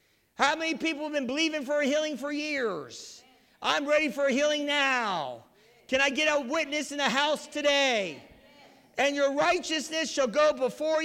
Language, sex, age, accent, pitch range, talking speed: English, male, 50-69, American, 265-325 Hz, 175 wpm